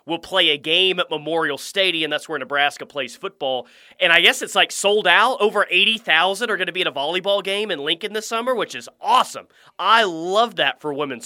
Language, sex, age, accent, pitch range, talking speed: English, male, 30-49, American, 150-220 Hz, 220 wpm